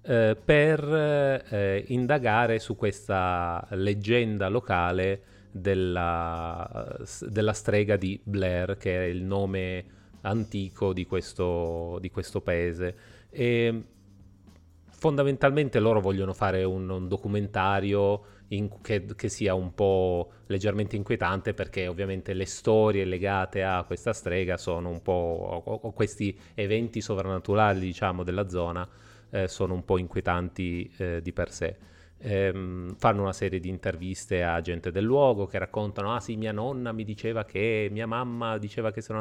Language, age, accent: Italian, 30-49, native